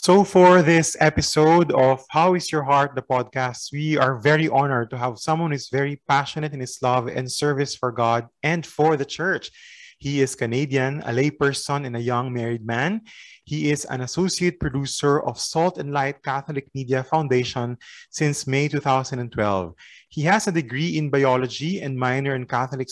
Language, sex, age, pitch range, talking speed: Filipino, male, 20-39, 125-150 Hz, 180 wpm